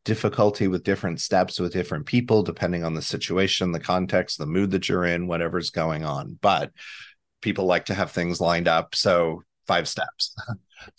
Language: English